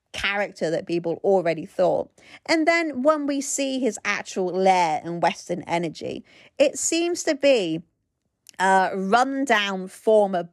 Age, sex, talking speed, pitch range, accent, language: 40-59, female, 130 wpm, 190-260 Hz, British, English